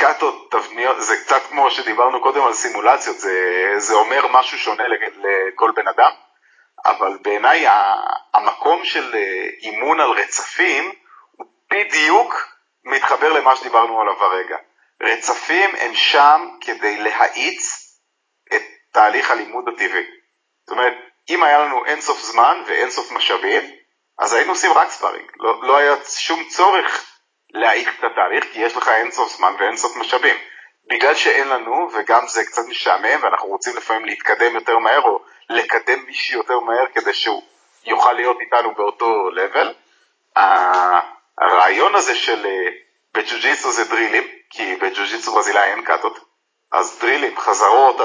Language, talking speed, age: English, 90 wpm, 40-59